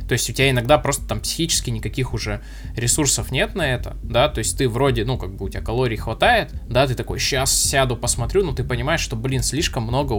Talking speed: 230 wpm